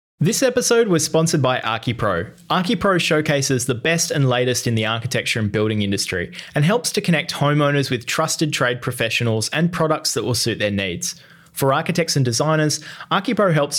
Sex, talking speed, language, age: male, 175 wpm, English, 20-39